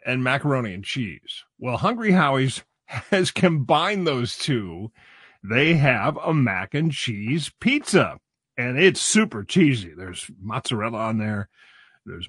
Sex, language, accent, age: male, English, American, 40-59